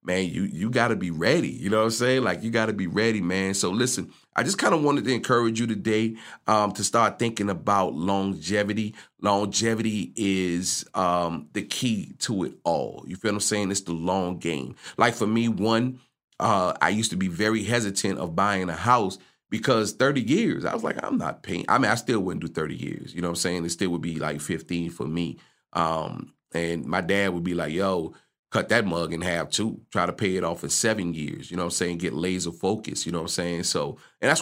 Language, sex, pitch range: English, male, 90-110 Hz